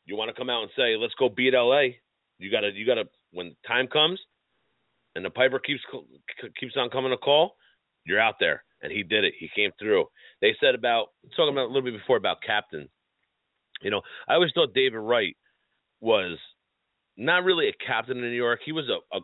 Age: 30-49